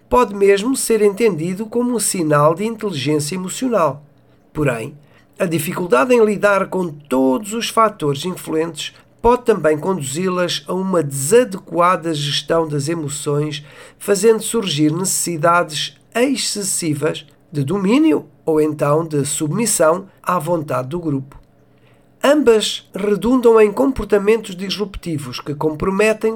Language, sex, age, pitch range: Portuguese, male, 50-69, 150-205 Hz